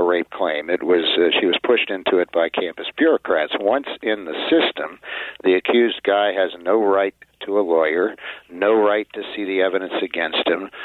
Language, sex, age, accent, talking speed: English, male, 60-79, American, 190 wpm